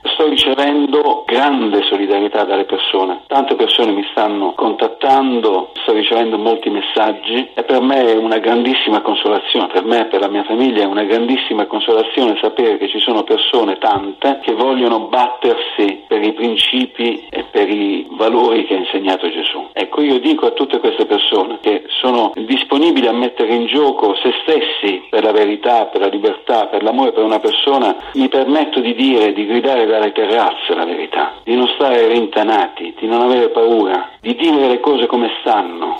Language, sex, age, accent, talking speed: Italian, male, 40-59, native, 175 wpm